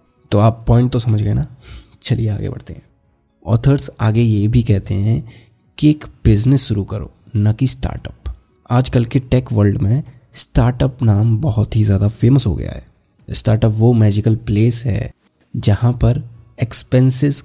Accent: native